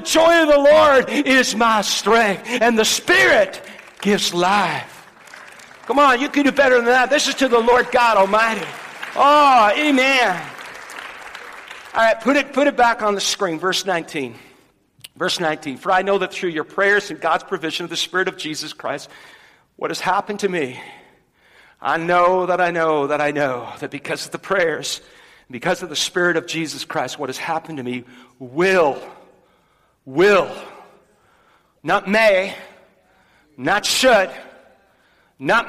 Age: 50-69